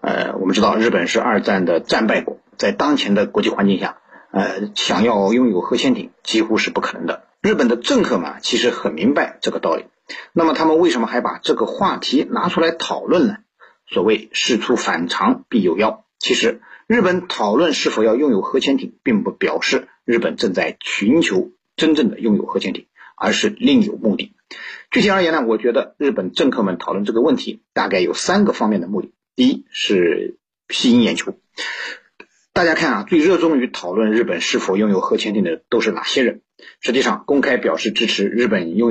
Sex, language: male, Chinese